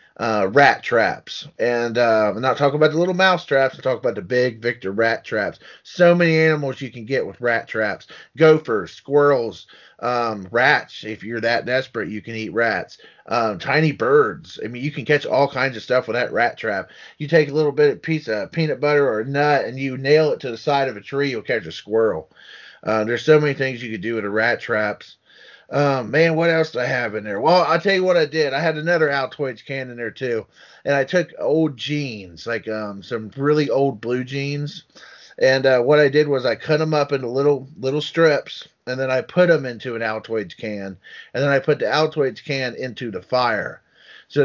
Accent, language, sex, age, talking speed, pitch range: American, English, male, 30-49, 225 wpm, 120-150 Hz